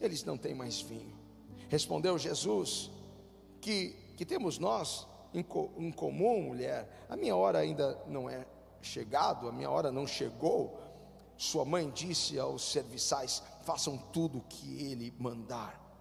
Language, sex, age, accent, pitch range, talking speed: Portuguese, male, 50-69, Brazilian, 125-180 Hz, 145 wpm